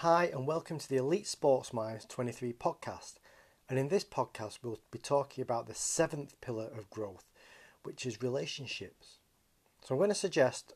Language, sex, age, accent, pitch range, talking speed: English, male, 40-59, British, 115-155 Hz, 175 wpm